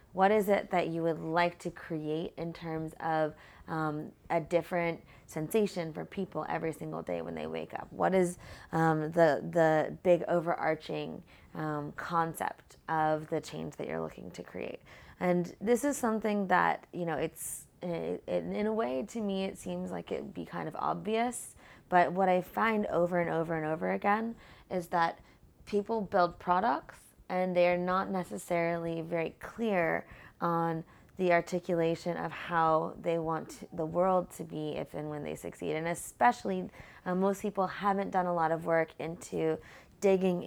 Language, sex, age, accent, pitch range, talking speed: English, female, 20-39, American, 160-185 Hz, 170 wpm